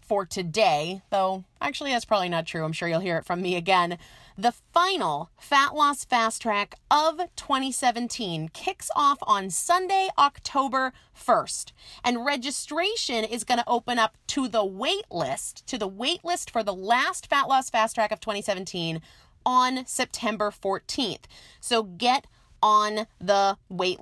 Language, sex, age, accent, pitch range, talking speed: English, female, 30-49, American, 200-275 Hz, 155 wpm